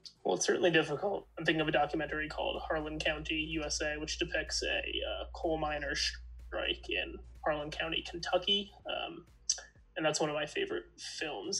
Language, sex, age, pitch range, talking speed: English, male, 20-39, 150-175 Hz, 165 wpm